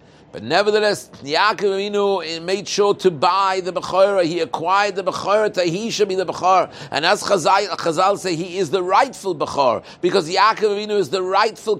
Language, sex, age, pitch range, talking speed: English, male, 60-79, 185-220 Hz, 175 wpm